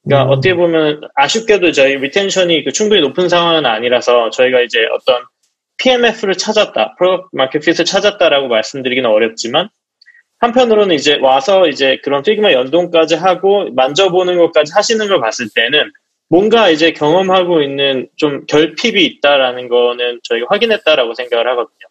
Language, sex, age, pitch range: Korean, male, 20-39, 135-195 Hz